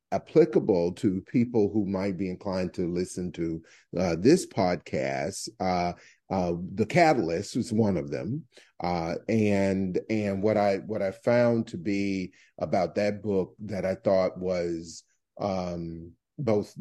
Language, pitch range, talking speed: English, 95-115 Hz, 145 wpm